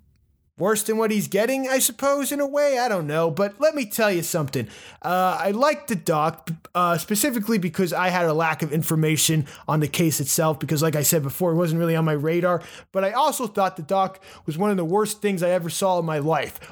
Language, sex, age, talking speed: English, male, 20-39, 235 wpm